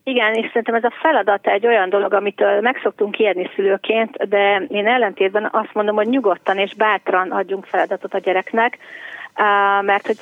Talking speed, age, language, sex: 165 wpm, 30-49, Hungarian, female